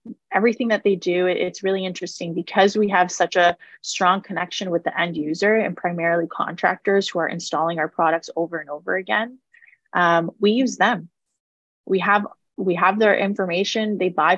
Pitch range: 170-205 Hz